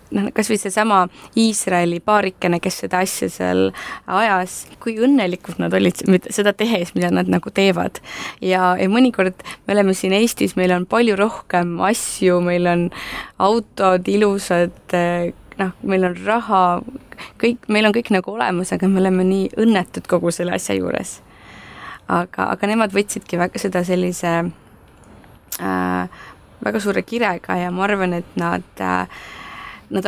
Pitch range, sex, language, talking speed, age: 175-205 Hz, female, English, 140 wpm, 20-39